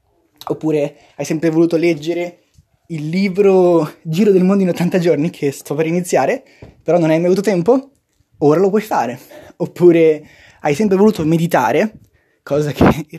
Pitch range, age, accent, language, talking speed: 140-180 Hz, 20-39, native, Italian, 160 wpm